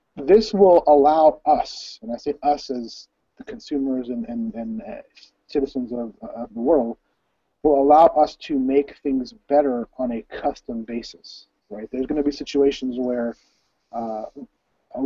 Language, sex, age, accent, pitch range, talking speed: English, male, 30-49, American, 125-150 Hz, 165 wpm